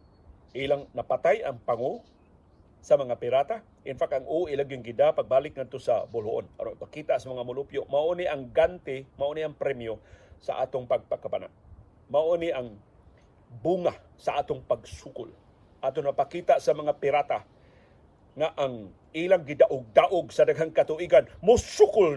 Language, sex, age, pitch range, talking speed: Filipino, male, 40-59, 120-195 Hz, 135 wpm